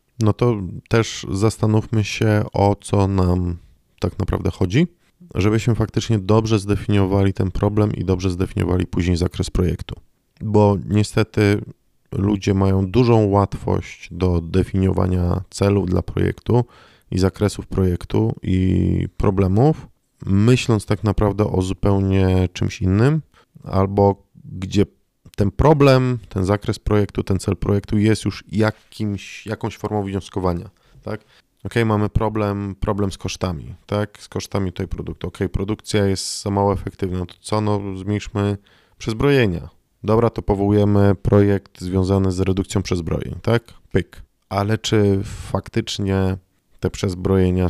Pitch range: 95-110 Hz